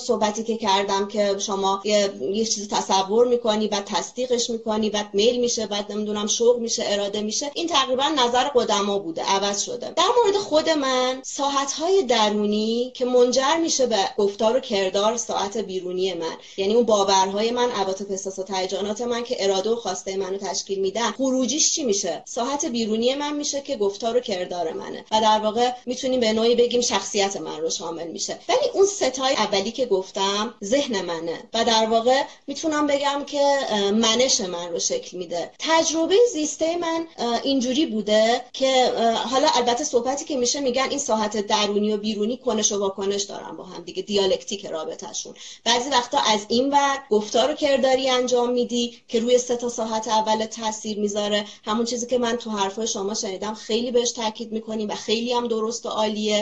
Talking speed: 175 wpm